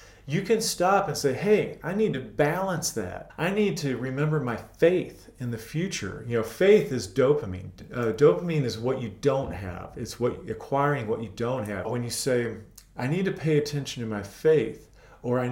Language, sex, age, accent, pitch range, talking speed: English, male, 40-59, American, 110-150 Hz, 200 wpm